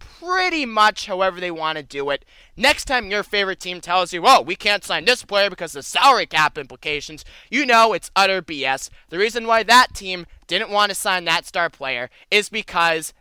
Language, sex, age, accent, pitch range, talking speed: English, male, 20-39, American, 170-230 Hz, 210 wpm